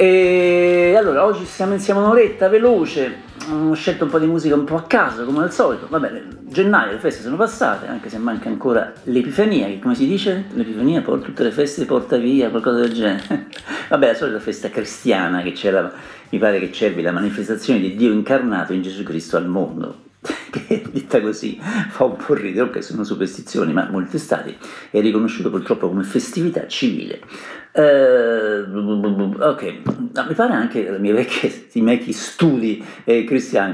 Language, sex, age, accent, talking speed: Italian, male, 50-69, native, 180 wpm